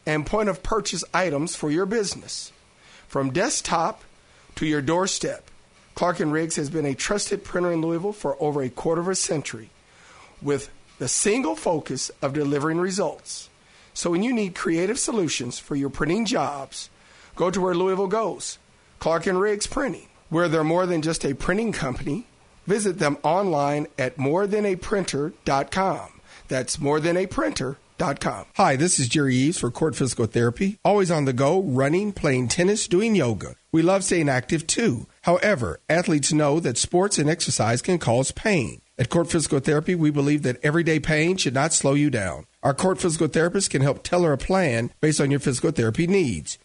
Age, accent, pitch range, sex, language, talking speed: 50-69, American, 140-185 Hz, male, English, 175 wpm